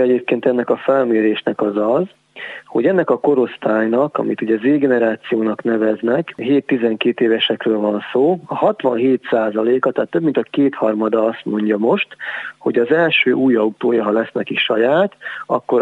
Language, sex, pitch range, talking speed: Hungarian, male, 115-130 Hz, 150 wpm